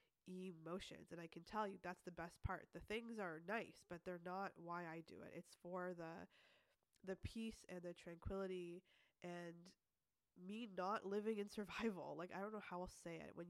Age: 20-39